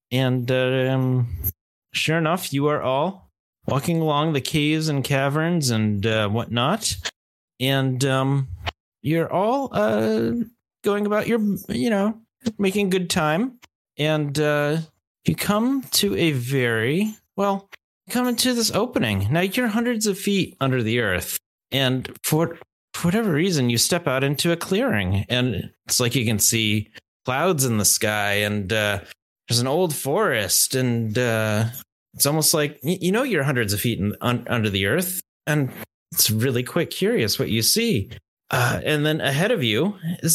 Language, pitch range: English, 120-190 Hz